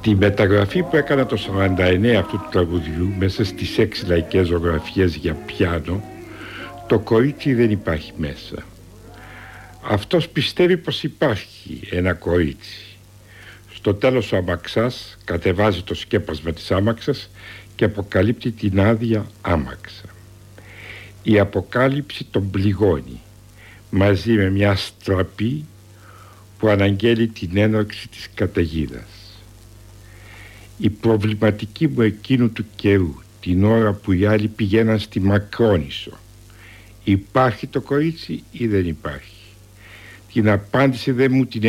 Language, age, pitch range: Greek, 70-89, 95-110 Hz